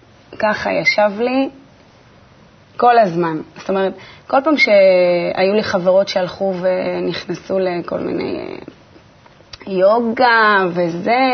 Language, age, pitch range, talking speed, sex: Hebrew, 20-39, 180-255 Hz, 95 wpm, female